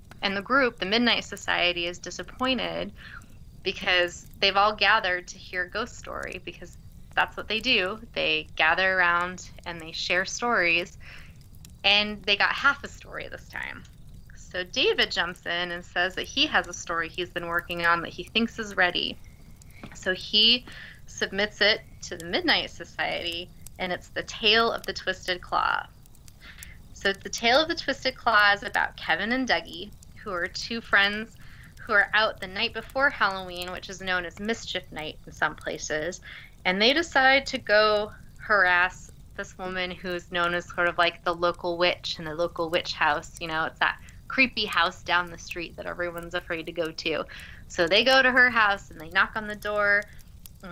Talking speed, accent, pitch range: 180 wpm, American, 175-220 Hz